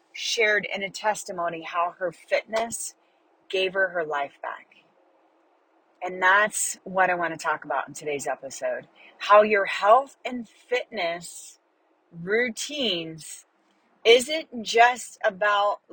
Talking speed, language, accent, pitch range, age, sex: 120 wpm, English, American, 190-235 Hz, 30-49, female